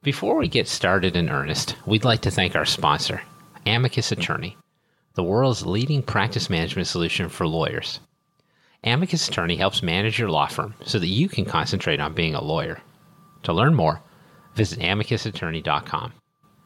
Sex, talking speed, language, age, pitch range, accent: male, 155 wpm, English, 40-59, 85-125 Hz, American